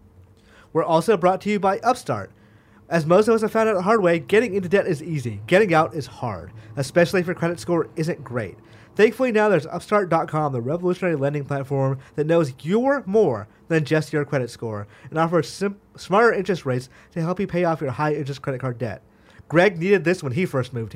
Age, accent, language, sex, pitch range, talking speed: 30-49, American, English, male, 130-185 Hz, 210 wpm